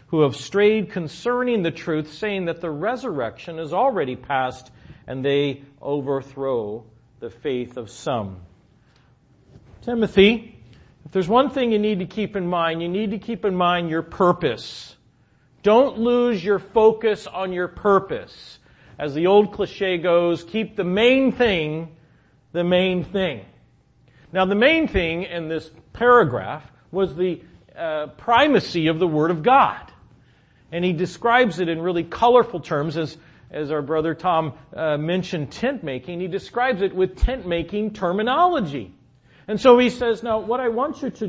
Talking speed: 155 wpm